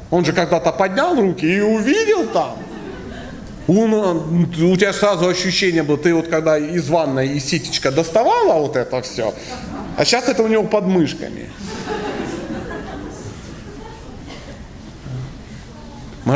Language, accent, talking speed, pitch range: Russian, native, 120 wpm, 130-215 Hz